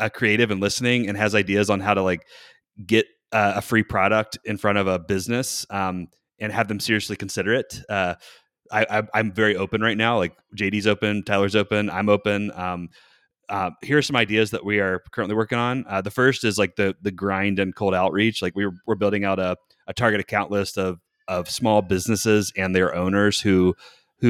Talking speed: 210 wpm